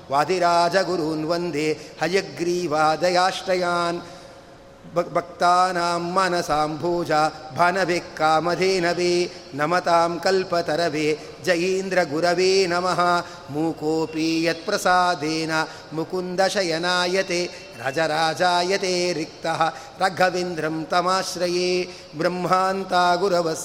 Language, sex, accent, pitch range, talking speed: Kannada, male, native, 165-185 Hz, 50 wpm